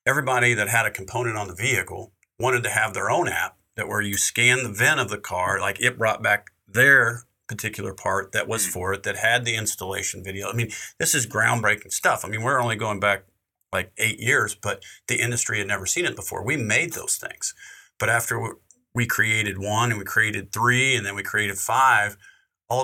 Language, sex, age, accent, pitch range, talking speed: English, male, 50-69, American, 100-120 Hz, 215 wpm